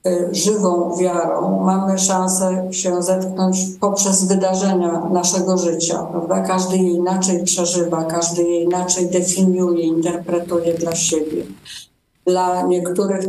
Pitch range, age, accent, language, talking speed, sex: 180-210 Hz, 50-69, native, Polish, 110 wpm, female